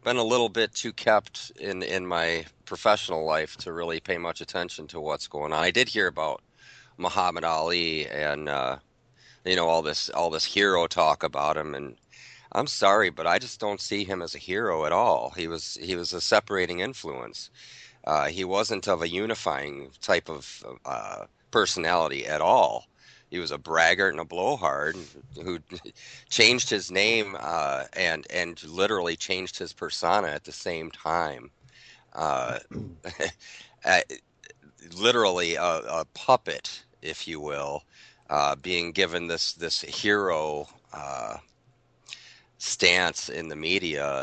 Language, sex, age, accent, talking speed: English, male, 40-59, American, 150 wpm